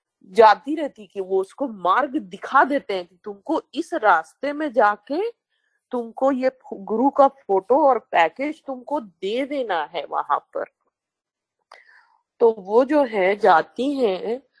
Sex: female